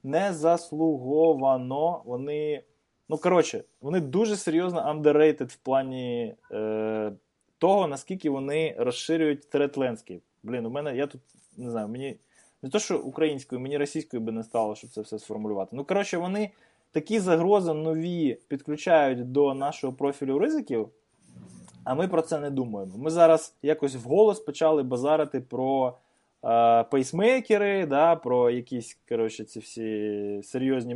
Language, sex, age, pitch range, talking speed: English, male, 20-39, 120-165 Hz, 140 wpm